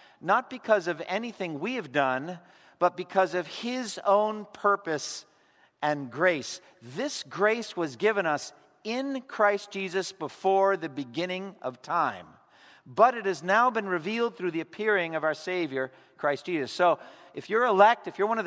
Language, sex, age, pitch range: English, male, 50-69, 160-200 Hz